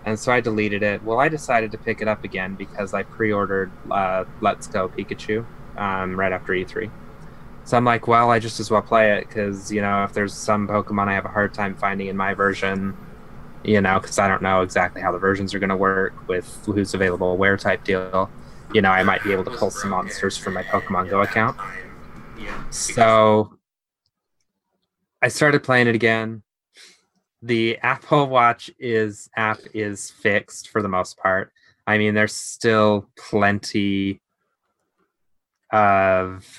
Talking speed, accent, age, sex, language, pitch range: 175 wpm, American, 20-39, male, English, 95-110 Hz